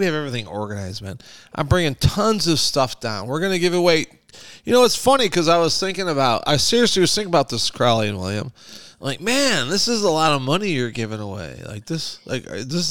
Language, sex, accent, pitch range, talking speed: English, male, American, 135-185 Hz, 225 wpm